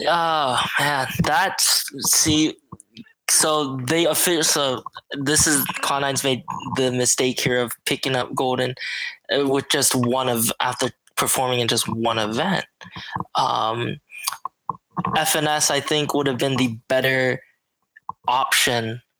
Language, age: English, 10-29